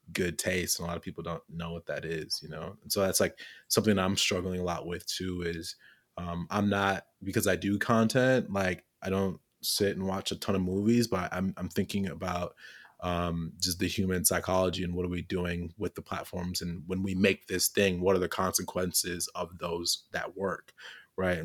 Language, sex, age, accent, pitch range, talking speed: English, male, 20-39, American, 90-105 Hz, 215 wpm